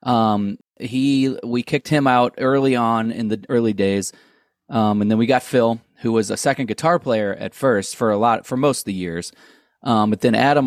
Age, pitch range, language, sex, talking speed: 30-49, 105-130 Hz, English, male, 215 wpm